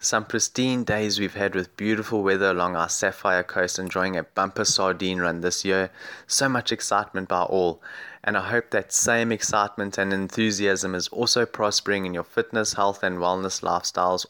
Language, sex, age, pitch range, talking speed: English, male, 20-39, 95-115 Hz, 175 wpm